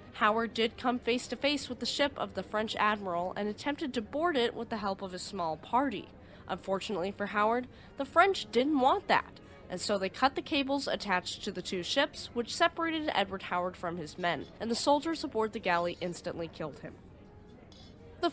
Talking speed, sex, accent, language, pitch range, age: 200 wpm, female, American, English, 180-270 Hz, 20-39